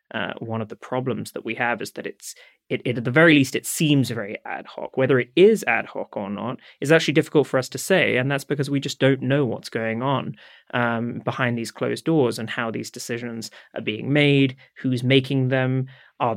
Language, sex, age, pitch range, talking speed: English, male, 20-39, 120-135 Hz, 225 wpm